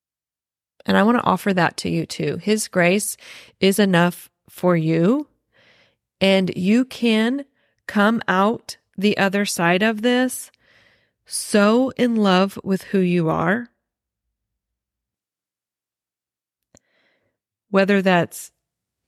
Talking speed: 105 wpm